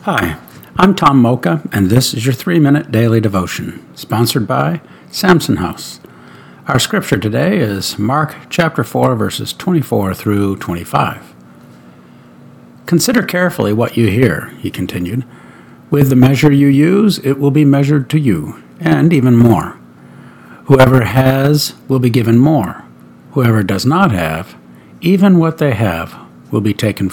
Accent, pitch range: American, 95-145 Hz